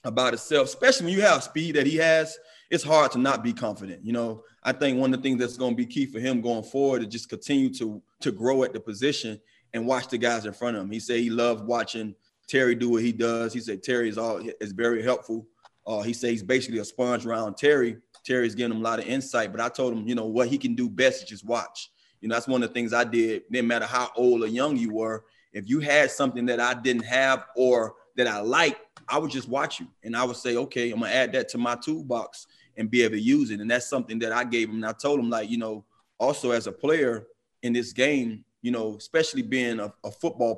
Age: 20-39